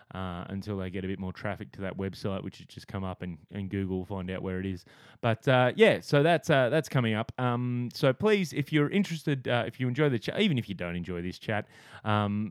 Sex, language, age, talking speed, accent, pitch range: male, English, 20-39, 255 wpm, Australian, 100-130 Hz